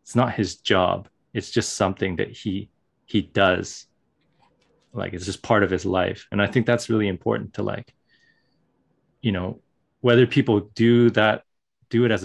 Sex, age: male, 30-49